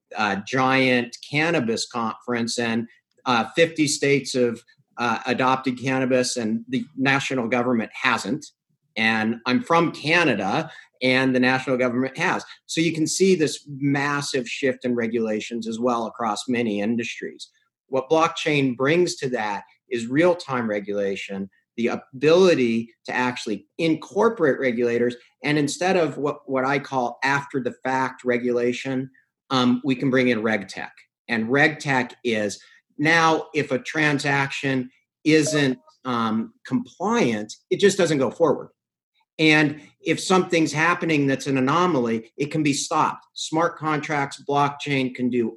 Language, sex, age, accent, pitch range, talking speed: English, male, 50-69, American, 125-155 Hz, 135 wpm